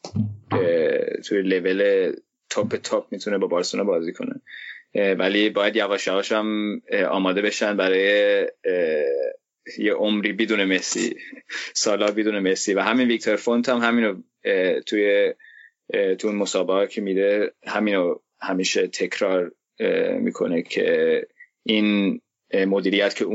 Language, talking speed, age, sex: Persian, 120 wpm, 20-39, male